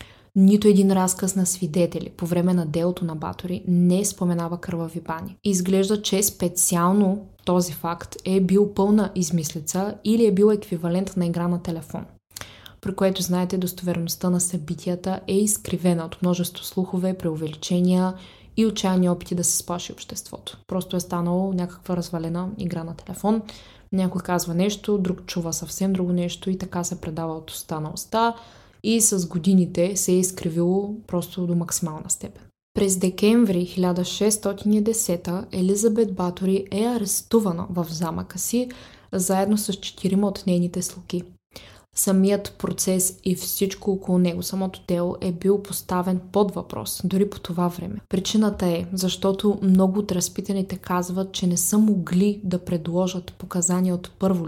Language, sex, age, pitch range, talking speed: Bulgarian, female, 20-39, 175-195 Hz, 145 wpm